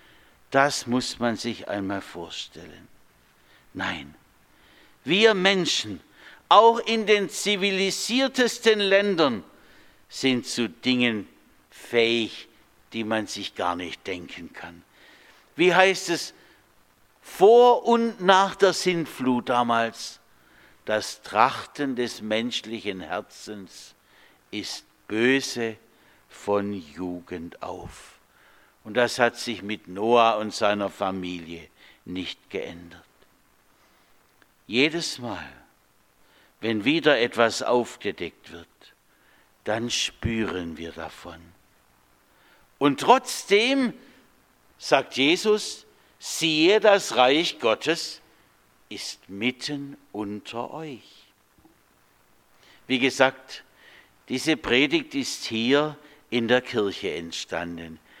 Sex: male